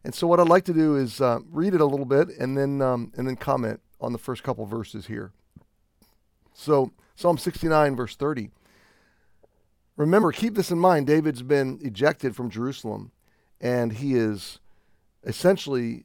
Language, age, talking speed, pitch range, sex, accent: English, 40-59, 170 wpm, 110-150 Hz, male, American